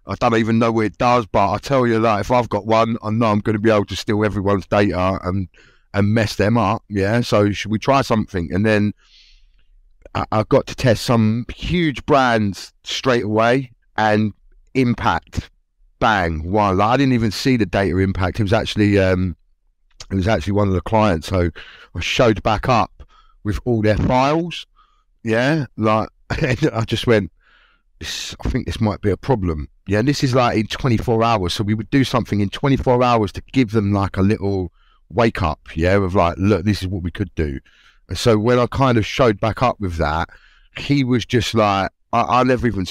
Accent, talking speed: British, 210 wpm